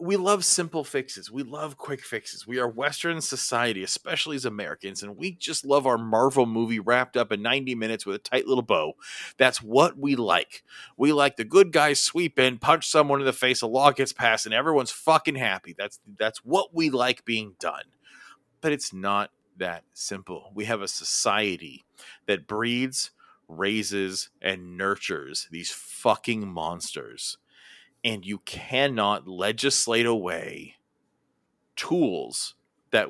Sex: male